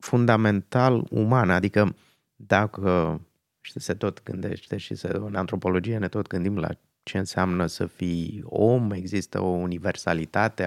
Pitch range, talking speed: 95-125 Hz, 130 wpm